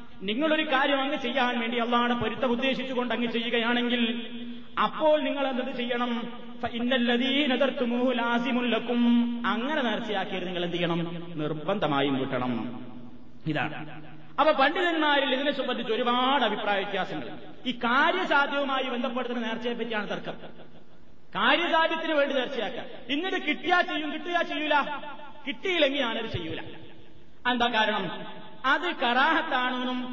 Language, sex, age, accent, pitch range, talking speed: Malayalam, male, 30-49, native, 220-265 Hz, 90 wpm